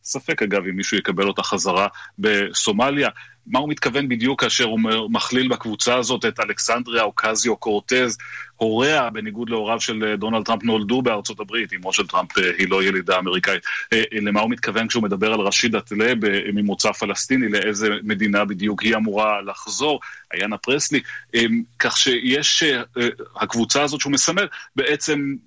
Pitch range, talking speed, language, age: 110-130 Hz, 150 wpm, Hebrew, 30-49